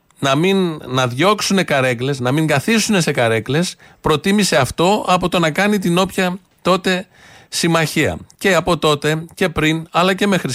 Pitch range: 125-170 Hz